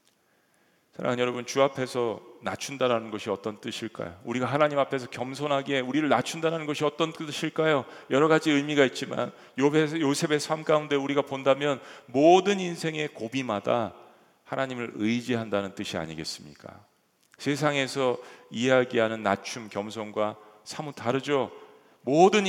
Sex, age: male, 40-59